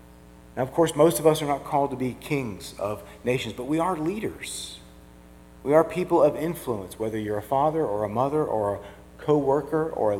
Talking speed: 205 wpm